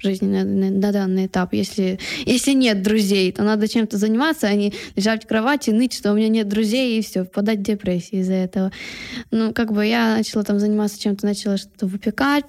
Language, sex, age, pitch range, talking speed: Ukrainian, female, 10-29, 205-240 Hz, 195 wpm